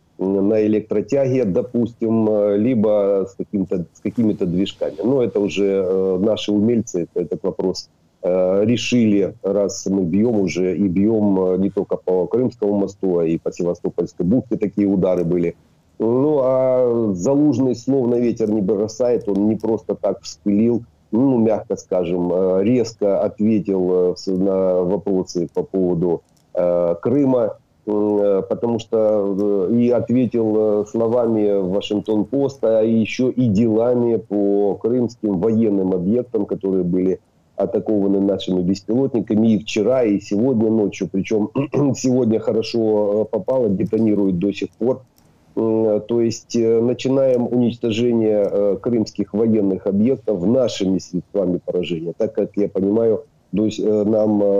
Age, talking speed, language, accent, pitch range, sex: 40-59, 115 wpm, Ukrainian, native, 95-115 Hz, male